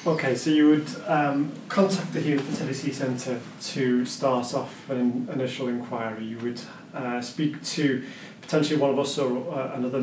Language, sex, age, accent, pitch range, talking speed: English, male, 30-49, British, 125-155 Hz, 175 wpm